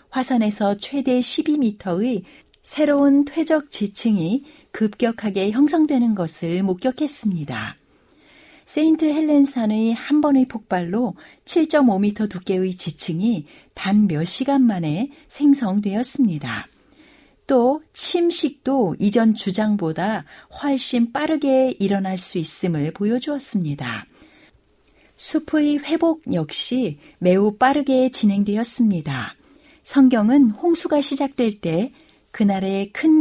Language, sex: Korean, female